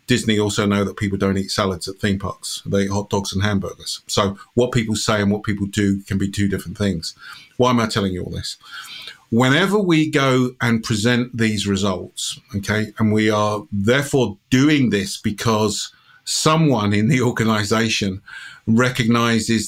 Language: English